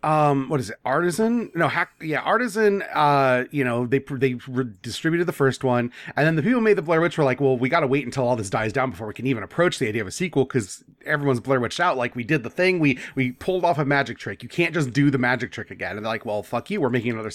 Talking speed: 295 wpm